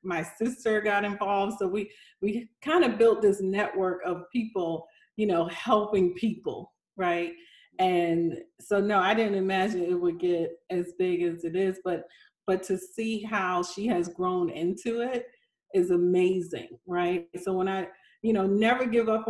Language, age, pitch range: English, 40-59, 175-205 Hz